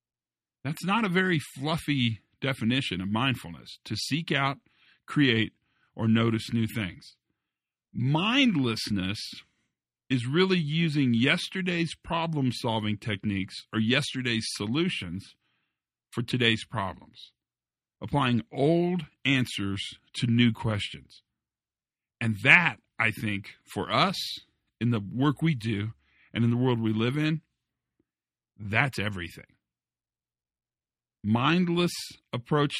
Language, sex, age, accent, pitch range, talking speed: English, male, 50-69, American, 105-140 Hz, 105 wpm